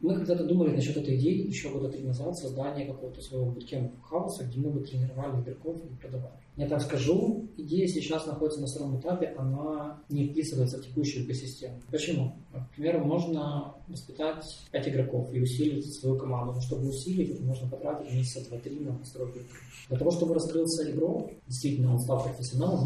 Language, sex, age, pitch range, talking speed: Russian, male, 20-39, 125-155 Hz, 170 wpm